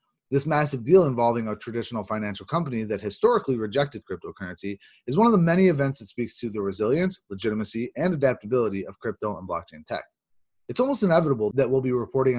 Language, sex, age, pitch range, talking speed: English, male, 30-49, 110-155 Hz, 185 wpm